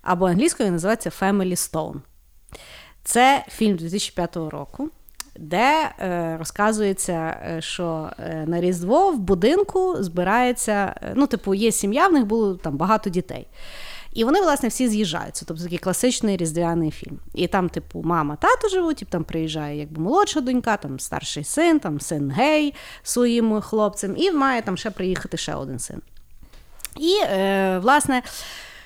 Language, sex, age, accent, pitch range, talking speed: Ukrainian, female, 30-49, native, 175-240 Hz, 145 wpm